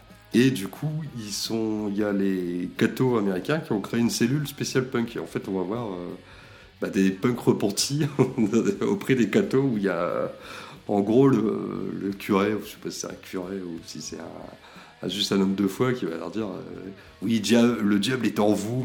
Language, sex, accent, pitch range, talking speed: French, male, French, 100-130 Hz, 225 wpm